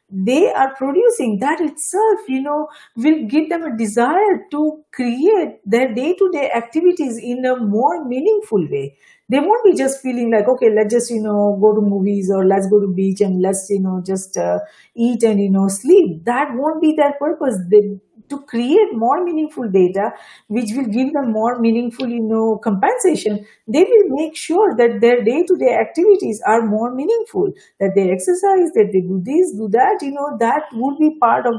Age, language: 50-69, English